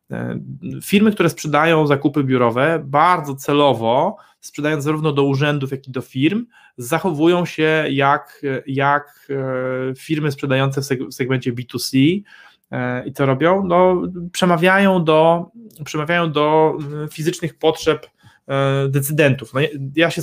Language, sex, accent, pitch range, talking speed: Polish, male, native, 130-170 Hz, 115 wpm